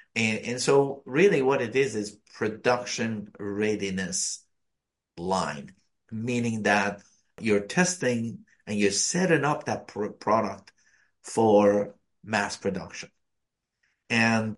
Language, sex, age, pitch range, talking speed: English, male, 50-69, 105-125 Hz, 105 wpm